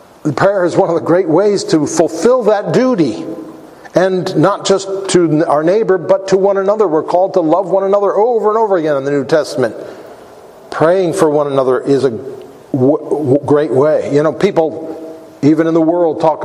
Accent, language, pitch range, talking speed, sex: American, English, 155-215 Hz, 195 wpm, male